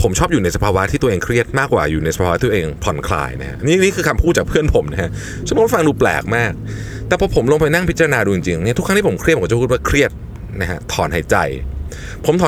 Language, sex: Thai, male